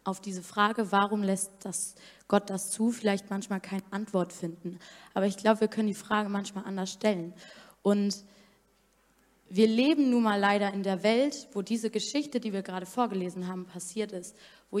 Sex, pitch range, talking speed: female, 200-235 Hz, 180 wpm